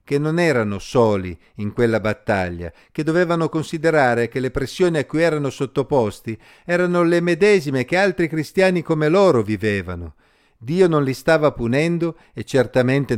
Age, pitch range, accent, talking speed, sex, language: 50-69, 110-160 Hz, native, 150 wpm, male, Italian